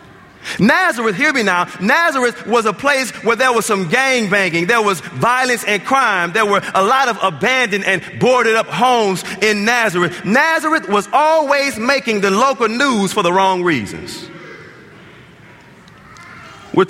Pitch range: 175-235 Hz